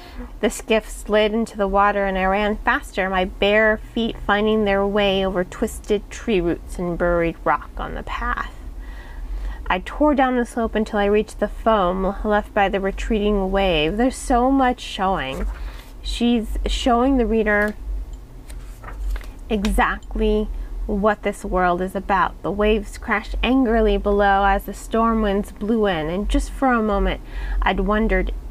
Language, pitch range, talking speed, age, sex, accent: English, 195-240 Hz, 155 wpm, 30-49, female, American